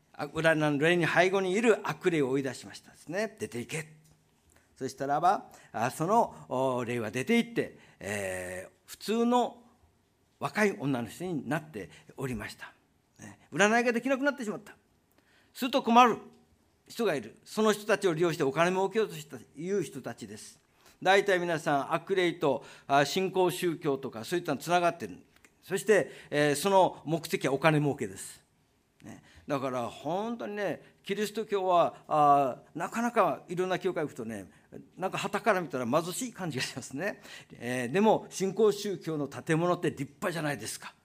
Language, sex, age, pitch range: Japanese, male, 50-69, 140-200 Hz